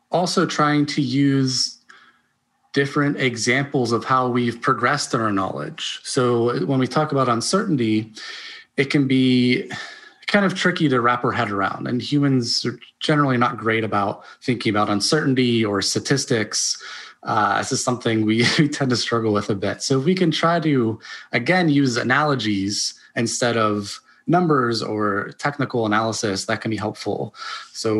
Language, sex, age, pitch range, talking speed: English, male, 20-39, 110-140 Hz, 160 wpm